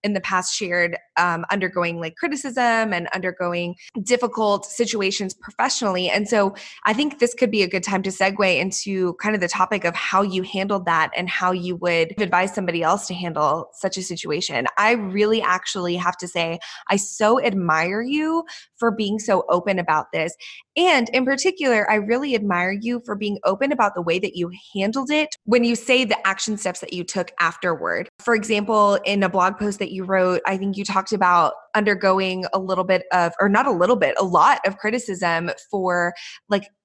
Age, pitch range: 20-39, 180-215 Hz